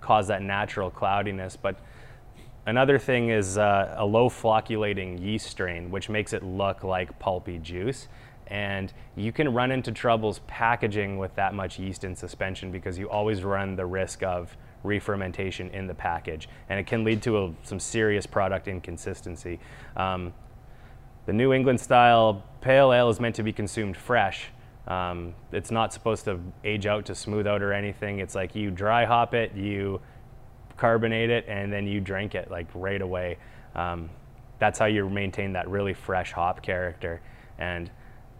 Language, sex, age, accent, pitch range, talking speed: English, male, 20-39, American, 95-115 Hz, 170 wpm